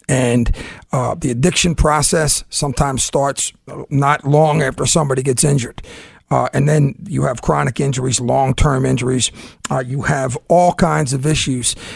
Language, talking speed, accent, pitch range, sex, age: English, 145 wpm, American, 130-165 Hz, male, 50-69